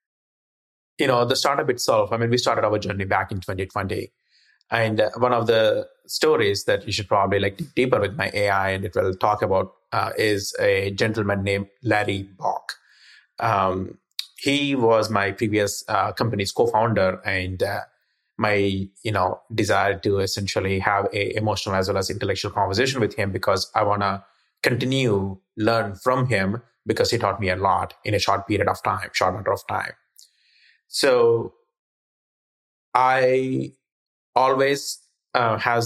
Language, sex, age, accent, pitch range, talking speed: English, male, 30-49, Indian, 100-125 Hz, 160 wpm